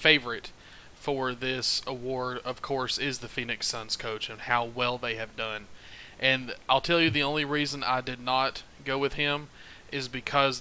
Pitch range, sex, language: 125-145 Hz, male, English